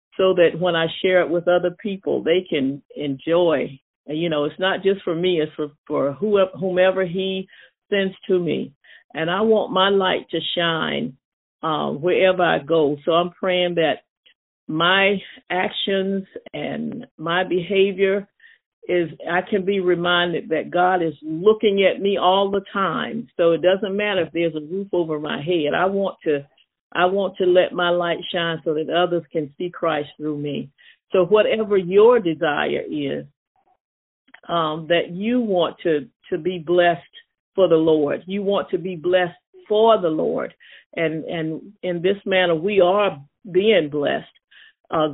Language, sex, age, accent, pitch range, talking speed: English, female, 50-69, American, 165-195 Hz, 165 wpm